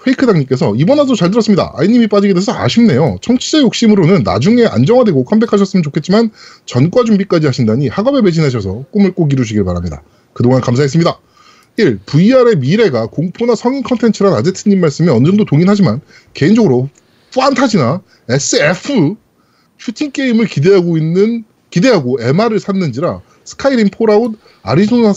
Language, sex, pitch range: Korean, male, 150-225 Hz